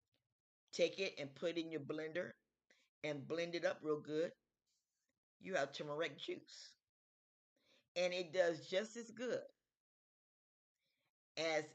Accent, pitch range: American, 150-190 Hz